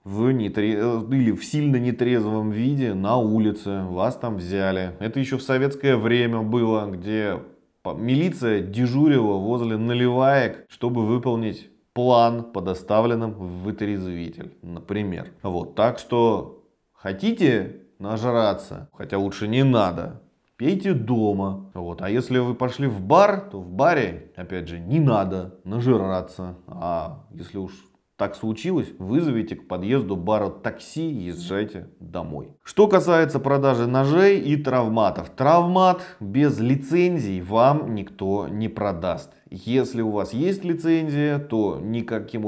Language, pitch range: Russian, 100-135 Hz